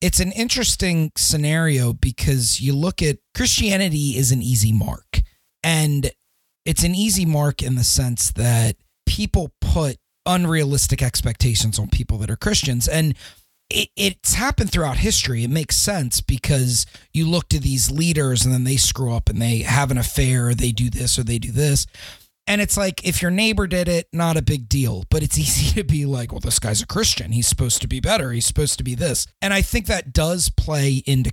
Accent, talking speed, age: American, 200 wpm, 30-49